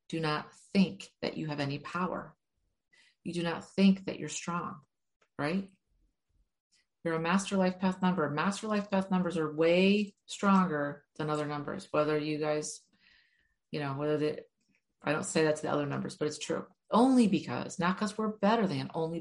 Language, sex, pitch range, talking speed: English, female, 155-195 Hz, 180 wpm